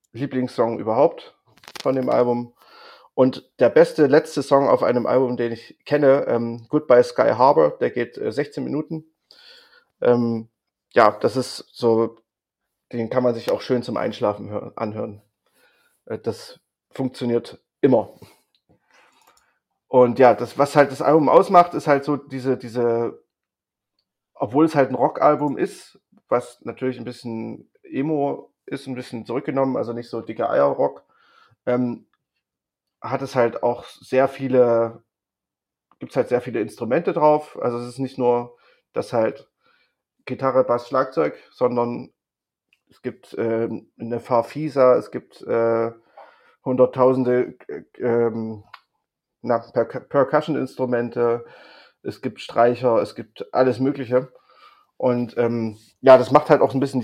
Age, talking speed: 30-49, 140 wpm